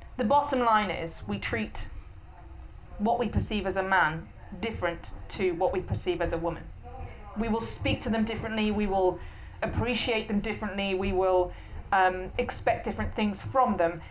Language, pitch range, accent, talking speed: English, 165-225 Hz, British, 165 wpm